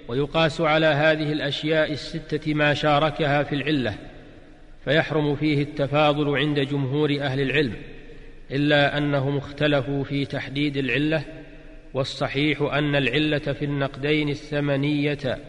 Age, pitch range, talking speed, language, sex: 40-59, 140-155 Hz, 110 wpm, Arabic, male